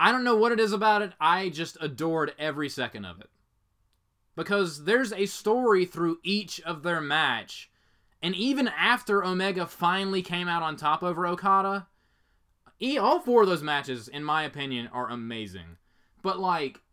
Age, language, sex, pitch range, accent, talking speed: 20-39, English, male, 140-180 Hz, American, 170 wpm